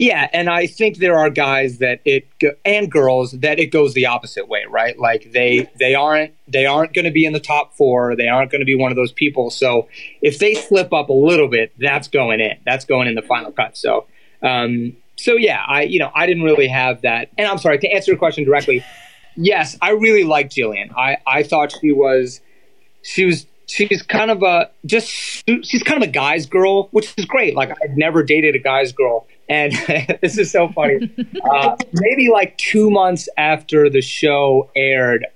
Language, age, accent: English, 30-49, American